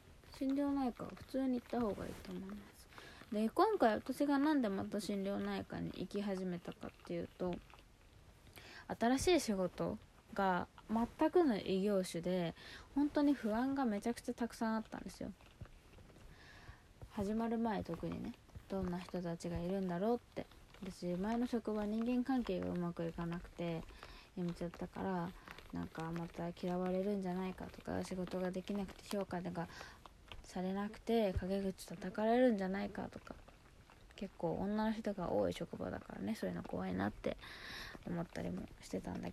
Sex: female